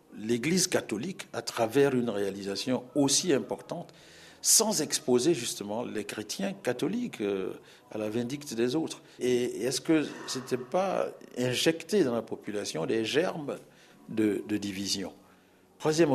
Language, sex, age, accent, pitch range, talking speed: French, male, 60-79, French, 110-170 Hz, 130 wpm